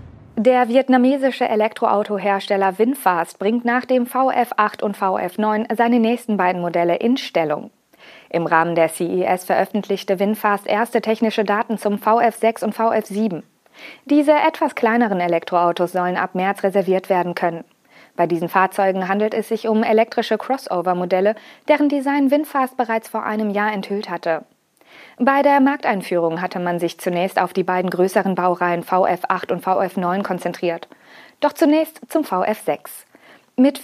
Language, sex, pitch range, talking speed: German, female, 180-235 Hz, 140 wpm